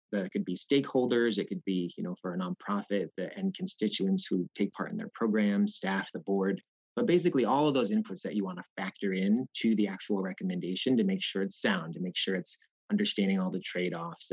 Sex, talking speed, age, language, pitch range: male, 220 wpm, 30-49, English, 95-135 Hz